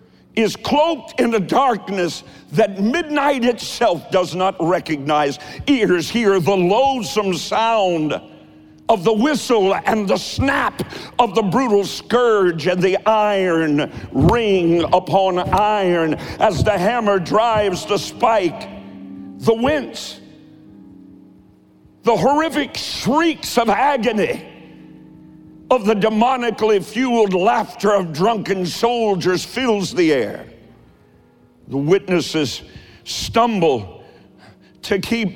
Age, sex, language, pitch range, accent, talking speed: 60-79, male, English, 165-225 Hz, American, 105 wpm